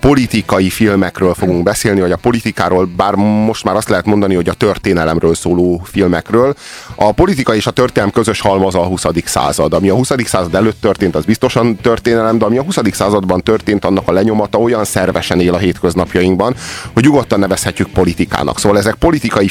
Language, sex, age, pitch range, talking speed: Hungarian, male, 30-49, 90-110 Hz, 180 wpm